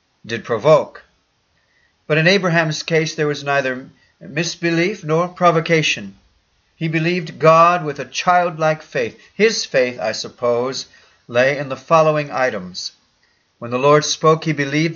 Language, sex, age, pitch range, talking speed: English, male, 50-69, 135-170 Hz, 135 wpm